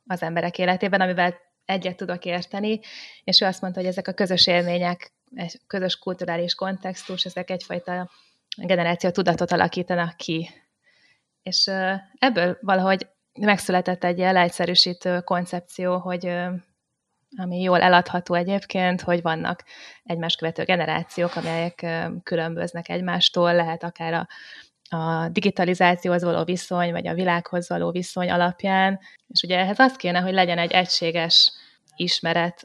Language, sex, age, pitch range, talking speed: Hungarian, female, 20-39, 175-185 Hz, 125 wpm